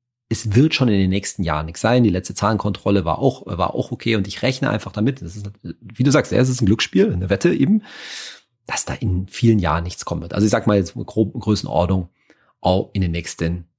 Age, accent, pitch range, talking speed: 40-59, German, 95-125 Hz, 220 wpm